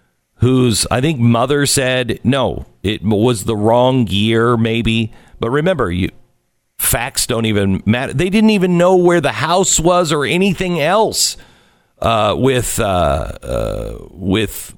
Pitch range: 100-150 Hz